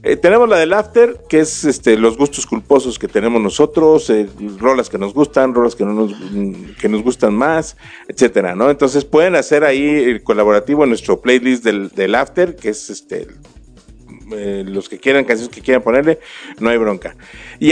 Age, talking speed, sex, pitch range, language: 50-69, 190 wpm, male, 110-150 Hz, Spanish